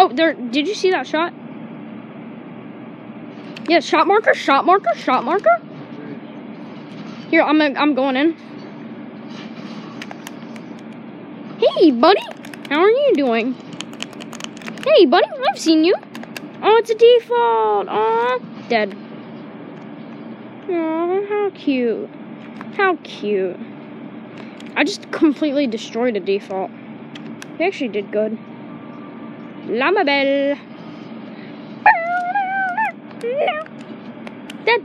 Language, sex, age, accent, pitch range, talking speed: English, female, 10-29, American, 250-370 Hz, 95 wpm